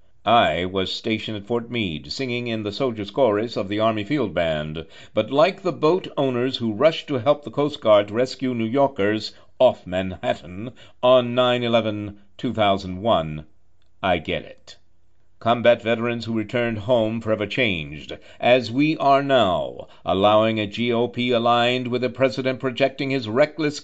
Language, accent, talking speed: English, American, 150 wpm